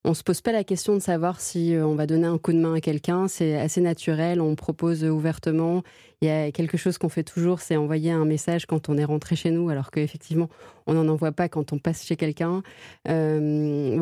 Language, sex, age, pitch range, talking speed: French, female, 20-39, 155-180 Hz, 235 wpm